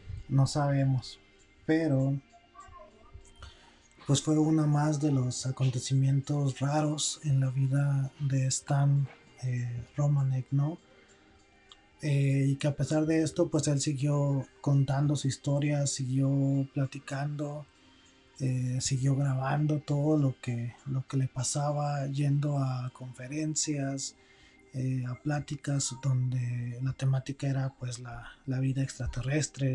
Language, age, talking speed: Spanish, 30-49, 115 wpm